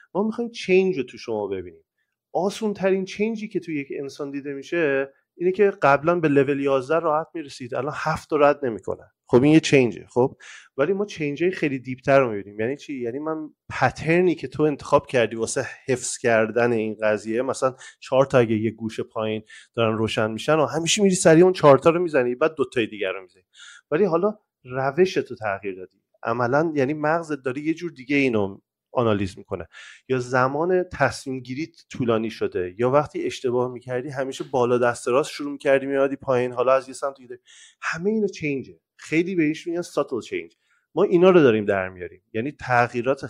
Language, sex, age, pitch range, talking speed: Persian, male, 30-49, 120-165 Hz, 185 wpm